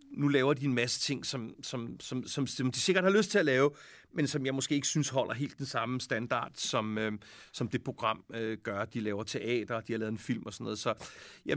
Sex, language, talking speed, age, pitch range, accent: male, Danish, 250 wpm, 40-59, 115-145 Hz, native